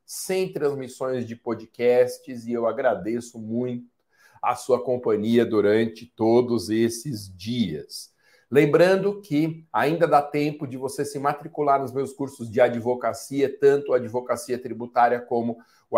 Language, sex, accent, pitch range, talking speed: Portuguese, male, Brazilian, 120-160 Hz, 130 wpm